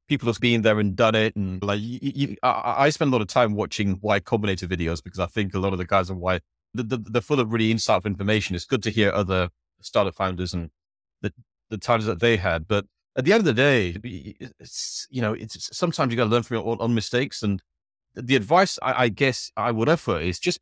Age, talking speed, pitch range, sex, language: 30-49, 250 wpm, 95-120 Hz, male, English